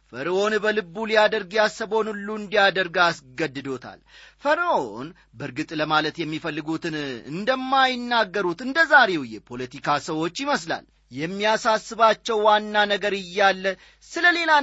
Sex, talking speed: male, 85 wpm